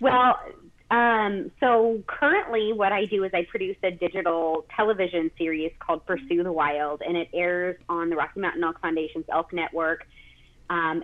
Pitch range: 160-195 Hz